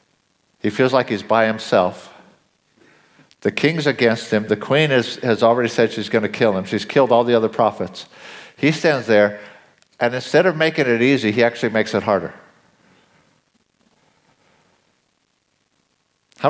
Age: 60-79